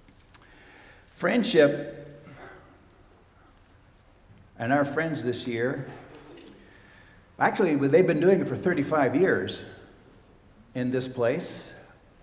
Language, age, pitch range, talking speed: German, 60-79, 115-160 Hz, 85 wpm